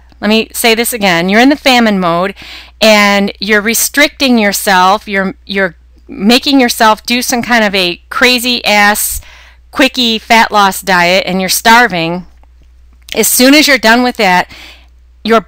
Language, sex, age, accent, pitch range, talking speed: English, female, 40-59, American, 195-250 Hz, 155 wpm